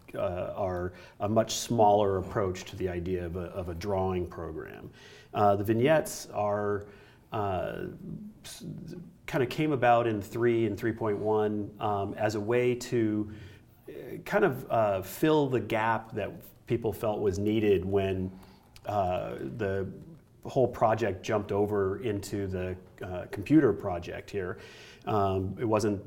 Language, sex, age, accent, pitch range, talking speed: English, male, 40-59, American, 95-110 Hz, 140 wpm